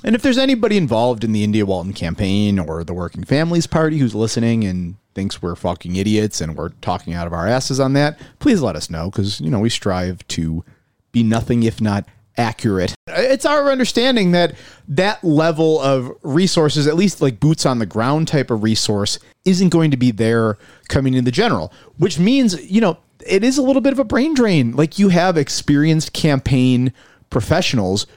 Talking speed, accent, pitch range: 195 wpm, American, 110-165 Hz